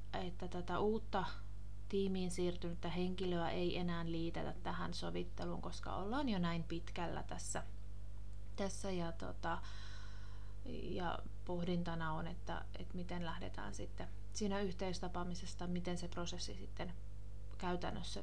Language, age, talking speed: Finnish, 30-49, 110 wpm